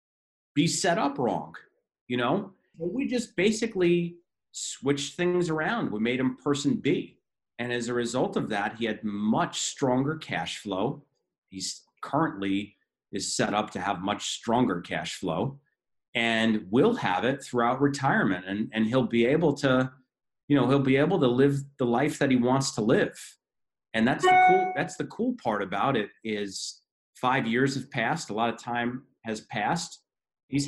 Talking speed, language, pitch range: 170 wpm, English, 110-145 Hz